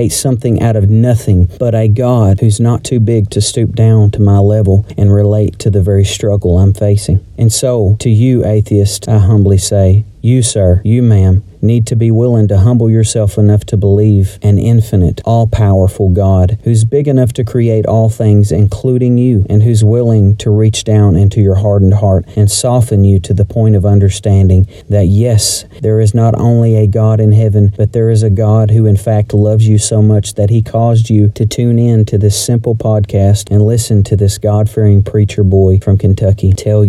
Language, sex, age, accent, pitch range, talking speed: English, male, 40-59, American, 100-110 Hz, 200 wpm